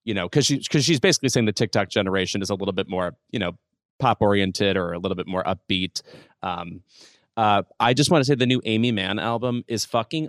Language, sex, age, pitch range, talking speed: English, male, 30-49, 105-135 Hz, 235 wpm